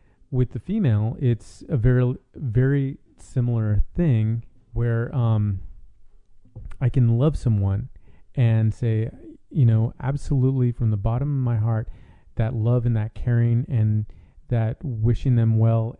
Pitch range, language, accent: 110-130 Hz, English, American